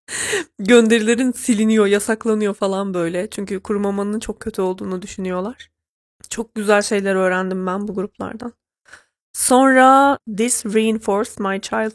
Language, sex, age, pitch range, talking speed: Turkish, female, 30-49, 190-225 Hz, 115 wpm